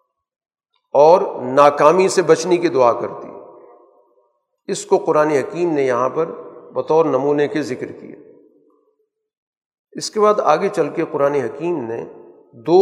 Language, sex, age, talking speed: Urdu, male, 50-69, 140 wpm